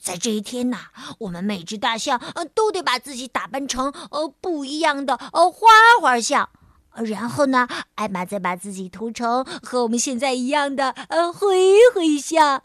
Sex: female